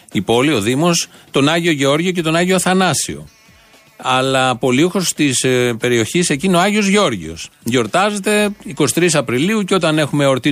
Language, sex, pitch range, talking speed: Greek, male, 130-185 Hz, 150 wpm